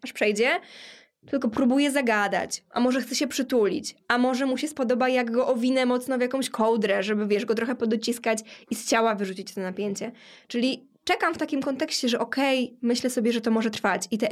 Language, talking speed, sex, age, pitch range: Polish, 200 wpm, female, 20-39, 220-265 Hz